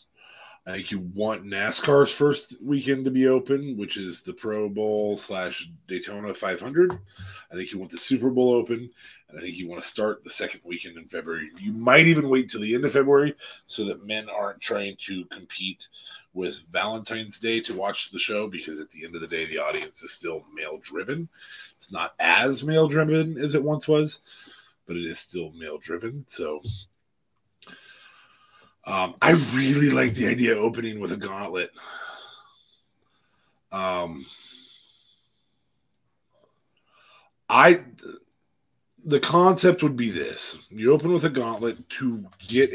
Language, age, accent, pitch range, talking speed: English, 30-49, American, 100-145 Hz, 155 wpm